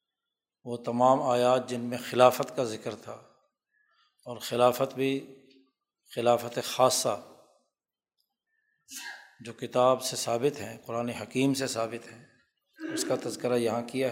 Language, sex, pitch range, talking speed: Urdu, male, 120-130 Hz, 125 wpm